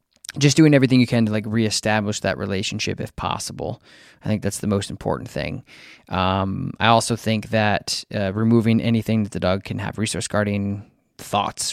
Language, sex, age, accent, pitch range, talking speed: English, male, 20-39, American, 100-120 Hz, 180 wpm